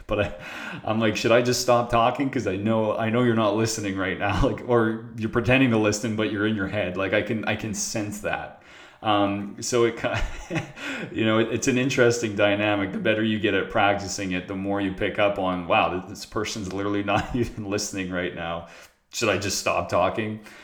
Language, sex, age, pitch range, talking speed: English, male, 30-49, 95-115 Hz, 210 wpm